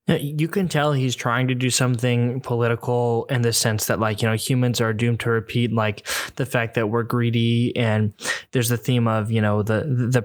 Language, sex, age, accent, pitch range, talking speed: English, male, 10-29, American, 110-125 Hz, 210 wpm